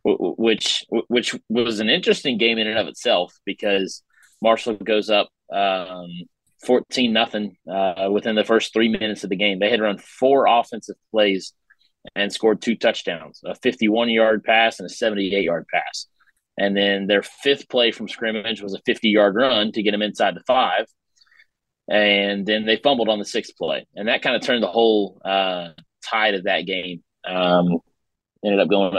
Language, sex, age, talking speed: English, male, 30-49, 175 wpm